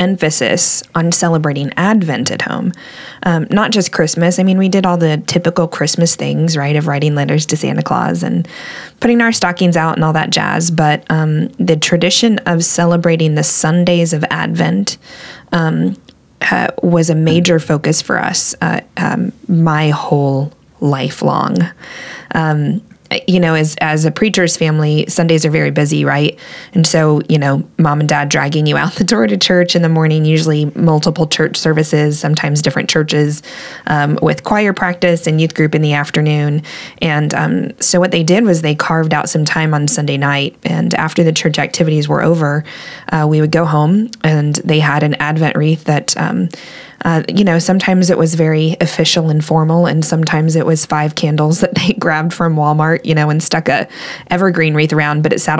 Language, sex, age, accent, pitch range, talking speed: English, female, 20-39, American, 150-175 Hz, 185 wpm